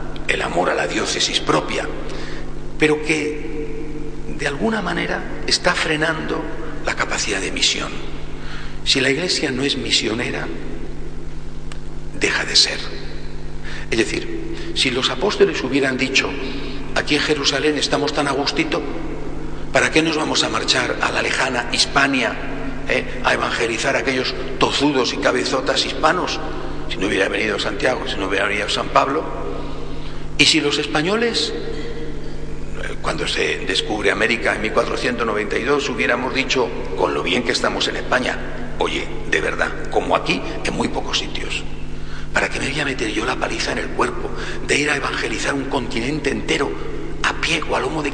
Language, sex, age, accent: Spanish, male, 60-79, Spanish